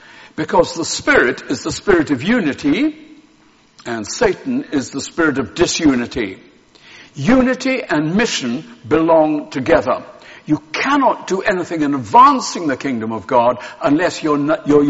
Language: English